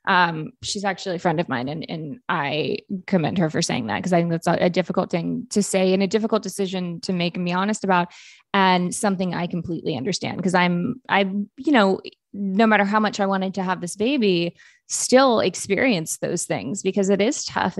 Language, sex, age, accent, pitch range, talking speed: English, female, 20-39, American, 175-215 Hz, 210 wpm